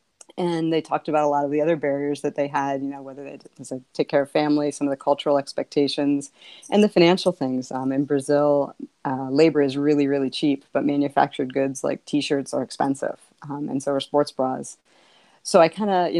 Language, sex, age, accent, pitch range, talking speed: English, female, 30-49, American, 140-160 Hz, 220 wpm